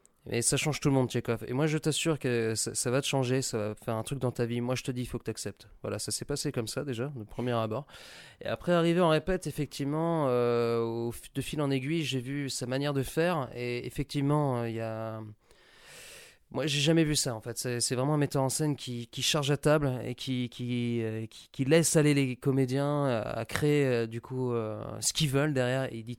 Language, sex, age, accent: French, male, 20-39, French